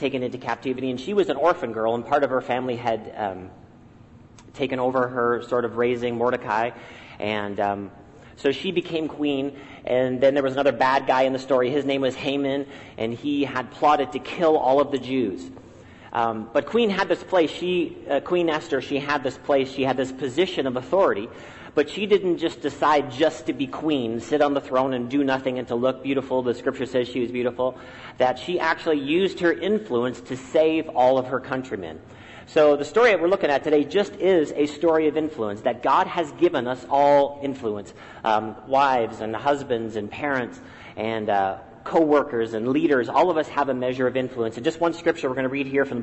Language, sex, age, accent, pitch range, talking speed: English, male, 40-59, American, 125-150 Hz, 210 wpm